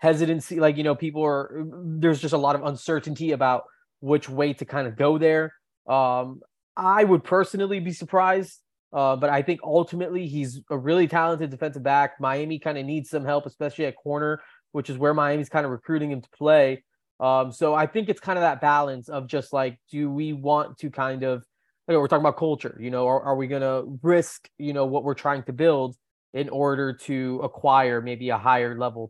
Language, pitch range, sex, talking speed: English, 135-160 Hz, male, 210 wpm